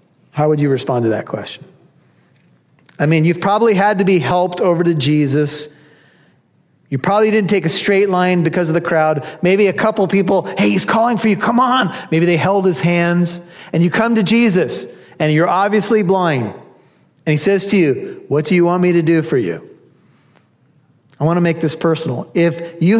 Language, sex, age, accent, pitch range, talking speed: English, male, 40-59, American, 155-210 Hz, 200 wpm